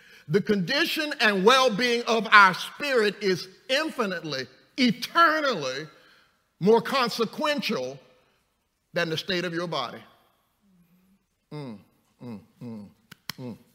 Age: 50-69